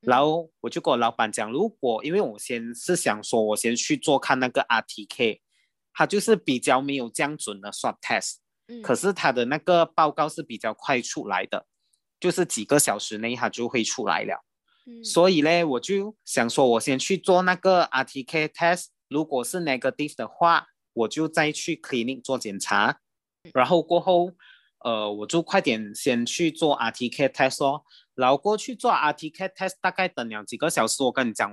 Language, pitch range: English, 115-175 Hz